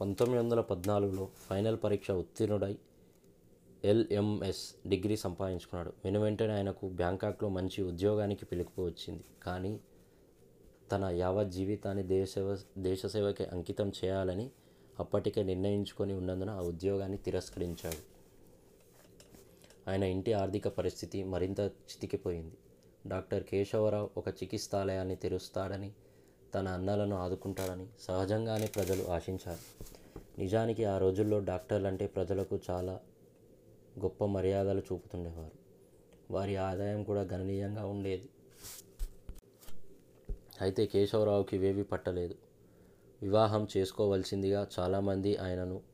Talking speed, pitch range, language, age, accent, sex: 90 wpm, 95-105 Hz, Telugu, 20-39, native, male